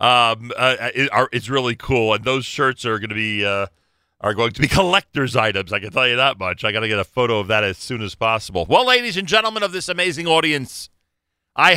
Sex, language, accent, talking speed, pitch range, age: male, English, American, 245 wpm, 110-155 Hz, 40-59